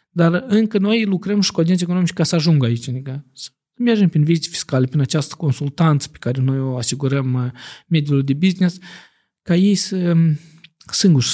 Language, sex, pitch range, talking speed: Romanian, male, 130-165 Hz, 170 wpm